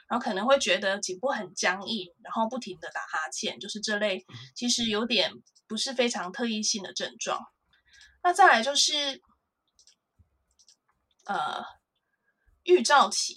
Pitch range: 200-275 Hz